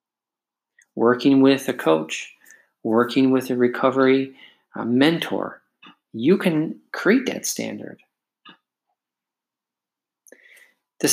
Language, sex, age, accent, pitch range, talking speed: English, male, 40-59, American, 120-160 Hz, 80 wpm